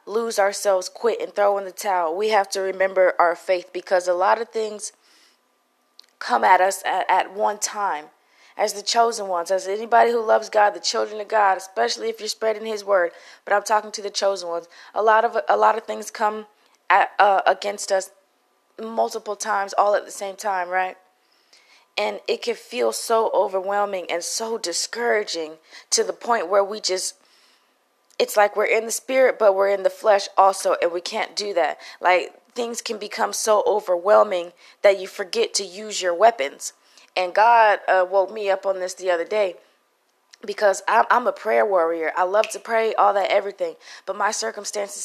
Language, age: English, 20-39